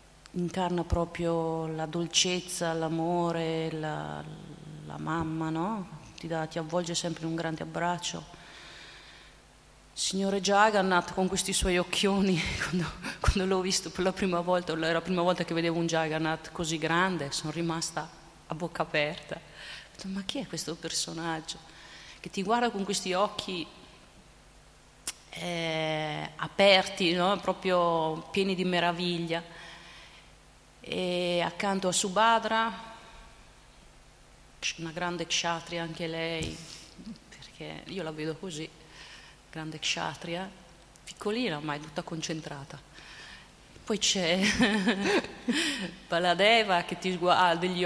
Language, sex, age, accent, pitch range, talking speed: Italian, female, 30-49, native, 165-190 Hz, 115 wpm